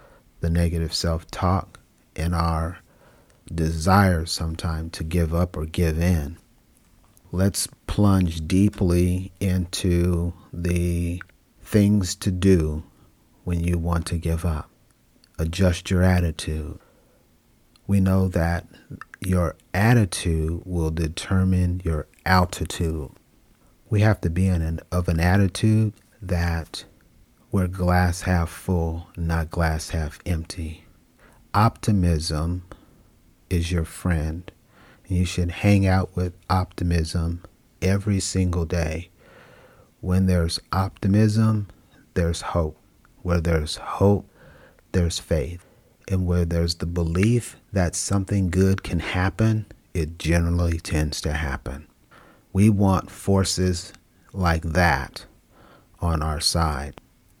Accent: American